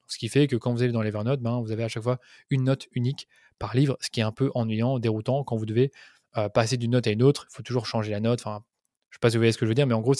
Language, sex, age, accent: French, male, 20-39, French